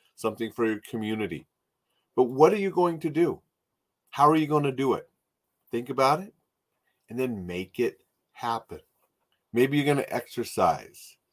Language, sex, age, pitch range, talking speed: English, male, 40-59, 95-125 Hz, 165 wpm